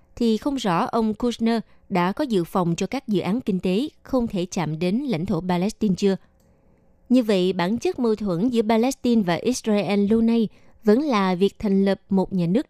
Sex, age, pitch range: female, 20-39, 180-225 Hz